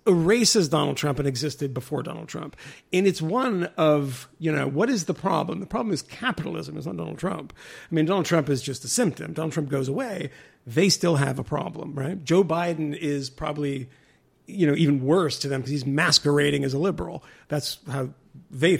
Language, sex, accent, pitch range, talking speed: English, male, American, 145-200 Hz, 200 wpm